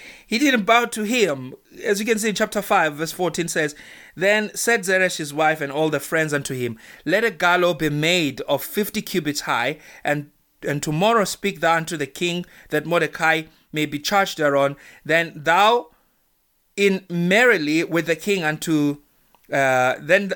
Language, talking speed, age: English, 175 wpm, 30-49